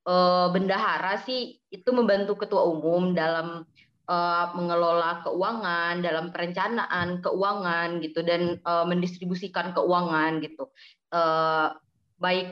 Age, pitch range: 20-39, 170-200 Hz